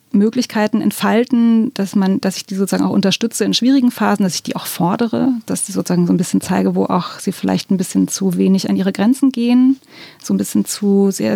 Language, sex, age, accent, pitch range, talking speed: German, female, 20-39, German, 185-225 Hz, 220 wpm